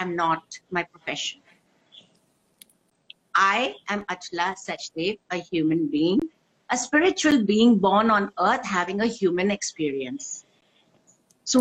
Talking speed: 120 wpm